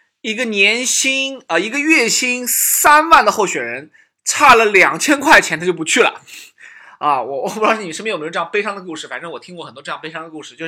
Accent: native